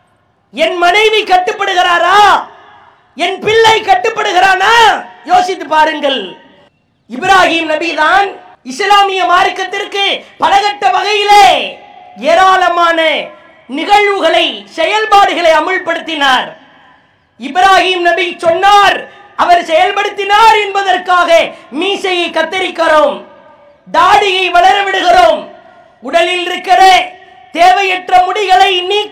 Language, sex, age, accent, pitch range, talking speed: English, female, 20-39, Indian, 335-395 Hz, 70 wpm